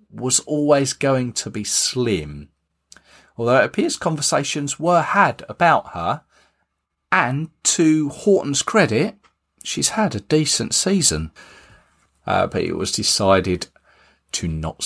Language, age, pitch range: English, 40-59, 85-140 Hz